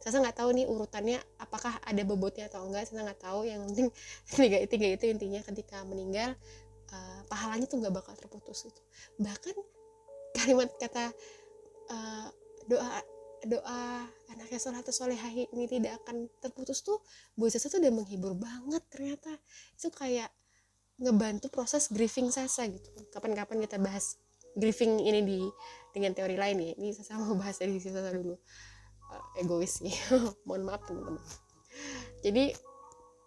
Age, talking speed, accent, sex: 20-39, 140 wpm, native, female